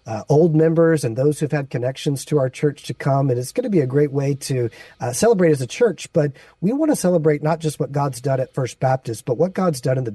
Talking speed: 270 wpm